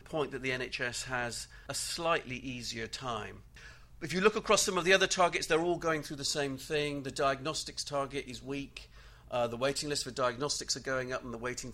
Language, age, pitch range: English, 40-59, 120-150 Hz